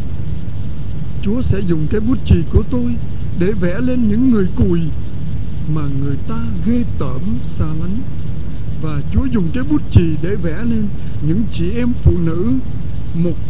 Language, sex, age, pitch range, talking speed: Vietnamese, male, 60-79, 100-145 Hz, 160 wpm